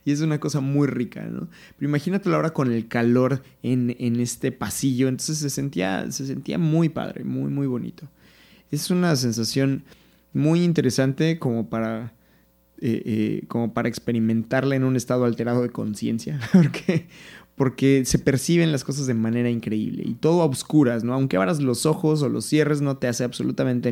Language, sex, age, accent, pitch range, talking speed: Spanish, male, 20-39, Mexican, 120-145 Hz, 165 wpm